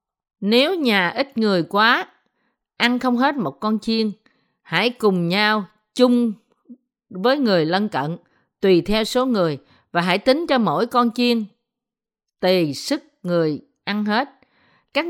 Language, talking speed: Vietnamese, 145 wpm